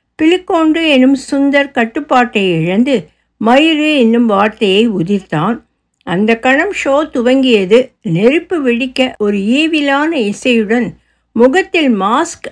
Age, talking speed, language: 60-79, 90 wpm, Tamil